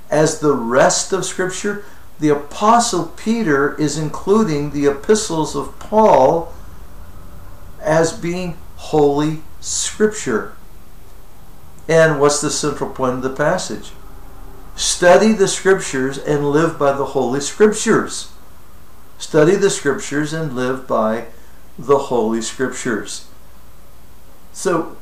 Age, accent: 60-79, American